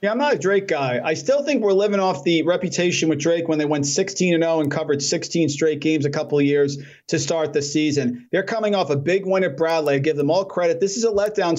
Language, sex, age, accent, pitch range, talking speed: English, male, 40-59, American, 150-180 Hz, 260 wpm